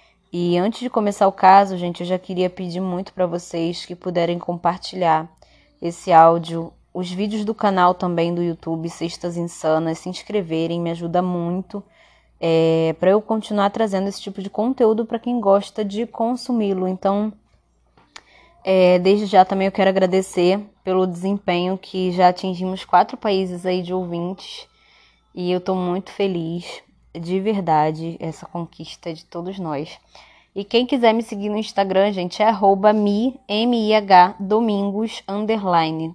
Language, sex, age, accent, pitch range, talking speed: Portuguese, female, 20-39, Brazilian, 175-205 Hz, 150 wpm